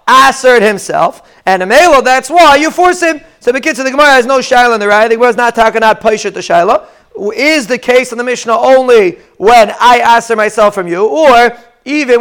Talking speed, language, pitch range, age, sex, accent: 220 wpm, English, 210-255 Hz, 40-59, male, American